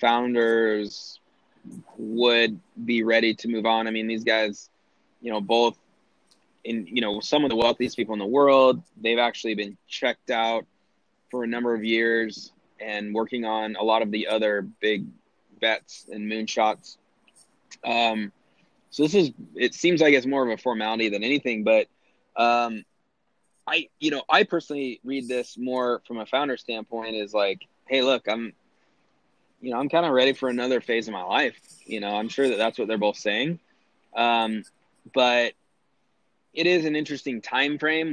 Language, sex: English, male